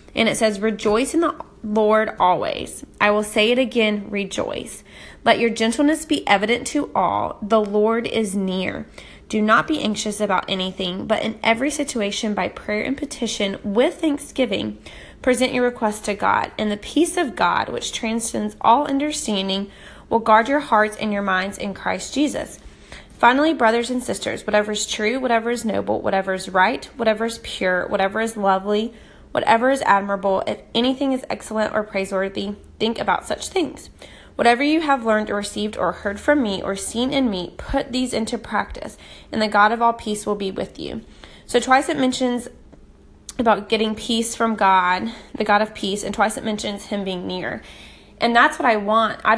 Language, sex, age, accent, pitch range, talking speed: English, female, 20-39, American, 205-240 Hz, 185 wpm